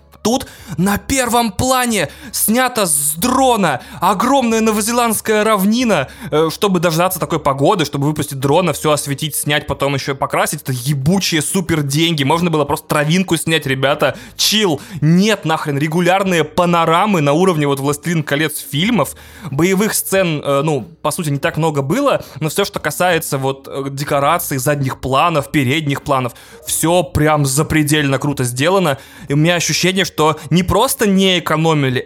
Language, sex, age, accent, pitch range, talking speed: Russian, male, 20-39, native, 135-175 Hz, 150 wpm